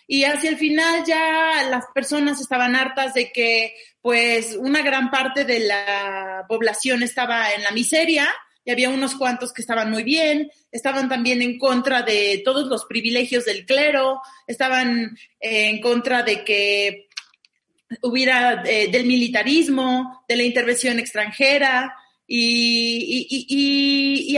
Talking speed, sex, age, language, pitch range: 140 wpm, female, 30-49, Spanish, 240-295 Hz